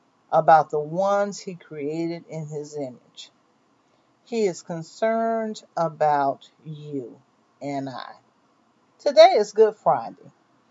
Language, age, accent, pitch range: English, 50-69, American, 155-210 Hz